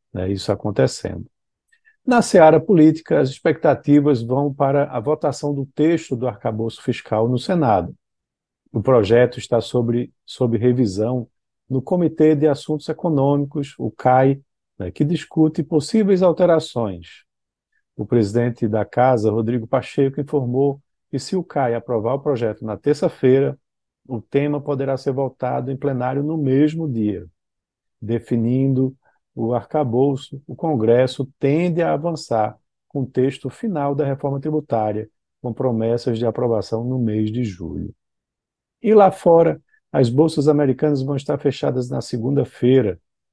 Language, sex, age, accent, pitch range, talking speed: Portuguese, male, 50-69, Brazilian, 115-145 Hz, 135 wpm